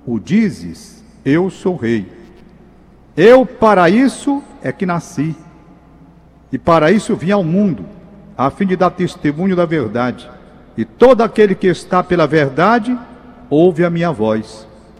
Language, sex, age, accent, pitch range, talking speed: Portuguese, male, 50-69, Brazilian, 165-235 Hz, 140 wpm